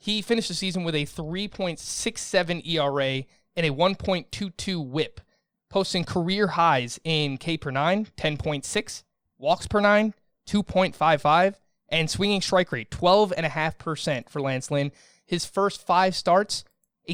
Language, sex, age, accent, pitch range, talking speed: English, male, 20-39, American, 140-190 Hz, 130 wpm